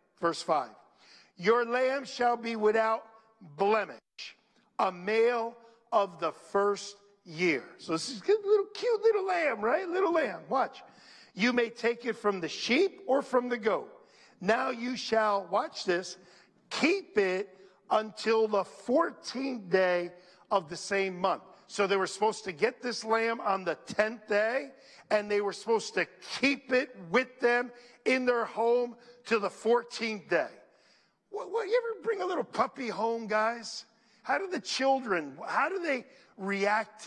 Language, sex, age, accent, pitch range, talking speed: English, male, 50-69, American, 190-250 Hz, 155 wpm